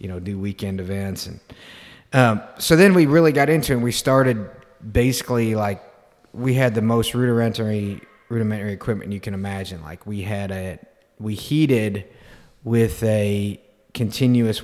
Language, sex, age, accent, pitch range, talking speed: English, male, 30-49, American, 100-120 Hz, 155 wpm